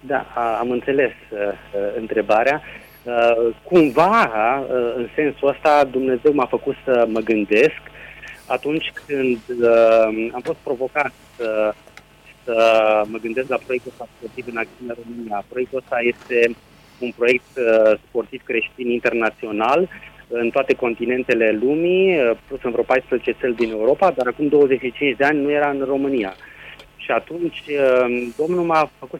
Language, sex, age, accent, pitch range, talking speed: Romanian, male, 30-49, native, 115-140 Hz, 140 wpm